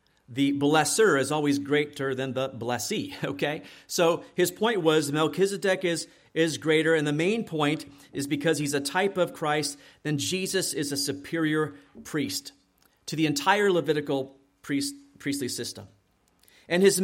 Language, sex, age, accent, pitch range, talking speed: English, male, 40-59, American, 135-165 Hz, 150 wpm